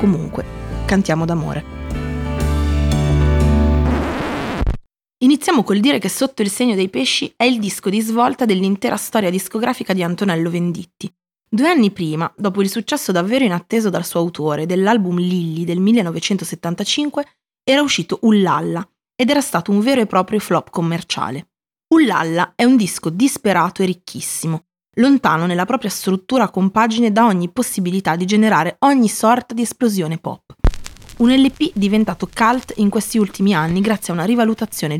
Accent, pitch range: native, 170-225 Hz